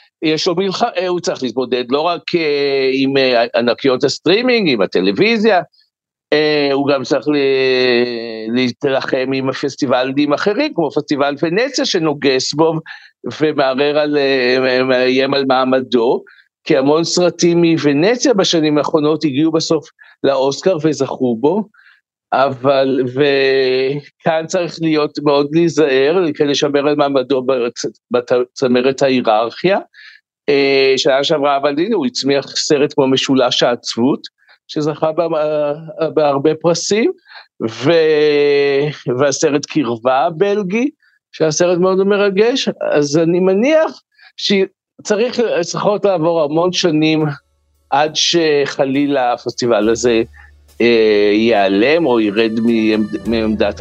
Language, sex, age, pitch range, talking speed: Hebrew, male, 50-69, 130-165 Hz, 100 wpm